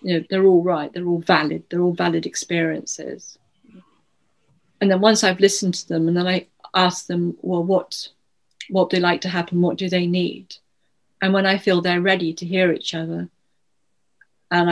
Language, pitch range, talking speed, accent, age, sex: English, 165-180 Hz, 190 wpm, British, 40-59, female